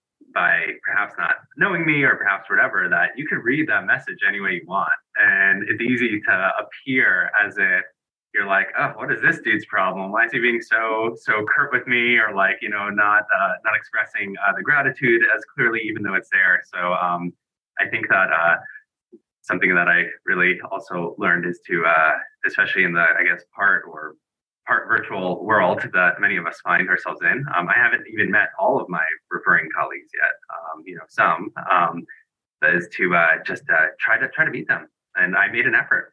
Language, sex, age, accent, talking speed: English, male, 20-39, American, 205 wpm